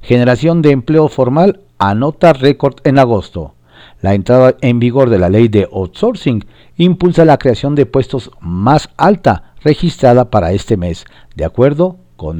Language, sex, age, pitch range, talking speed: Spanish, male, 50-69, 95-140 Hz, 150 wpm